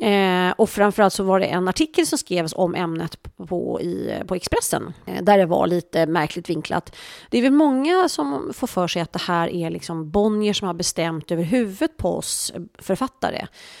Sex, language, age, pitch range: female, English, 30-49, 170-225 Hz